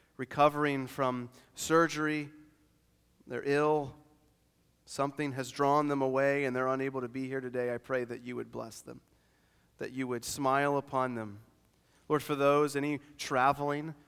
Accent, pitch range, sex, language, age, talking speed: American, 115-140 Hz, male, English, 30-49, 150 wpm